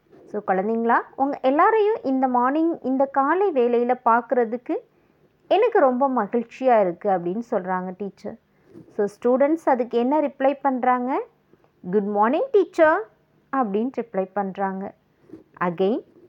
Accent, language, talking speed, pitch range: Indian, English, 105 wpm, 215-320 Hz